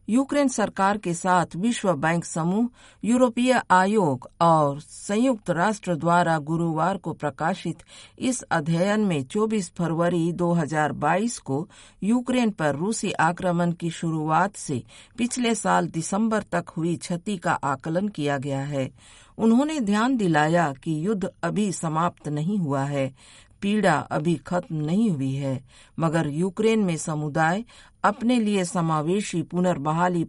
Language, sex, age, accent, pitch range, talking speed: Hindi, female, 50-69, native, 150-200 Hz, 130 wpm